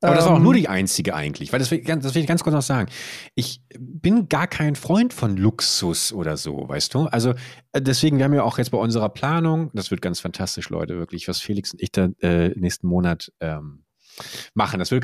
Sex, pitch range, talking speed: male, 110-140 Hz, 235 wpm